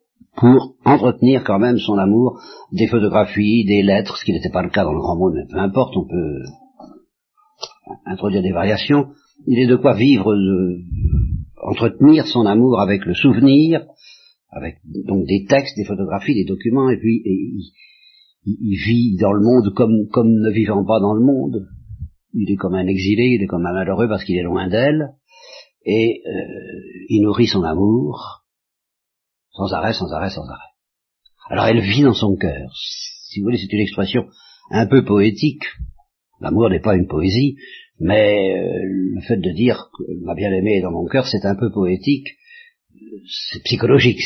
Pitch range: 100-140 Hz